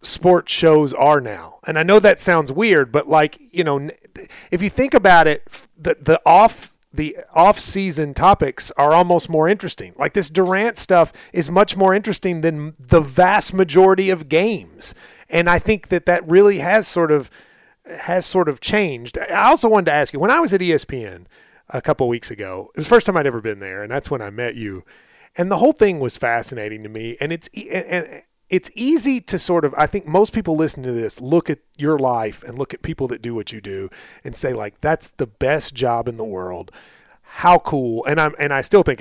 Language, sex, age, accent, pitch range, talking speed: English, male, 30-49, American, 140-190 Hz, 215 wpm